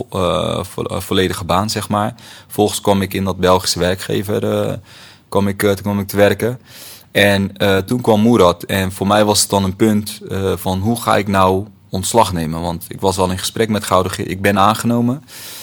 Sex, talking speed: male, 190 wpm